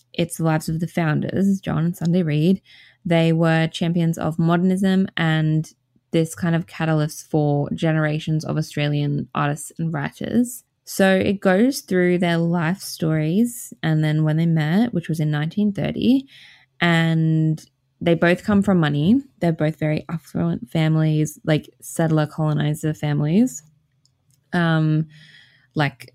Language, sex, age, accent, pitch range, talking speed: English, female, 20-39, Australian, 155-185 Hz, 140 wpm